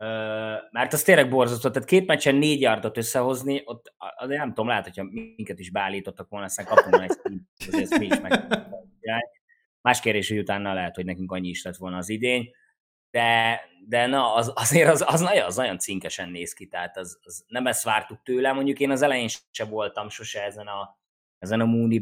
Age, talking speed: 20-39, 200 wpm